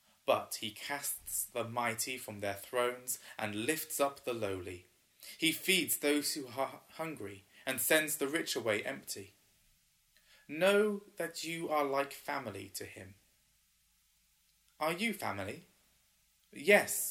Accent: British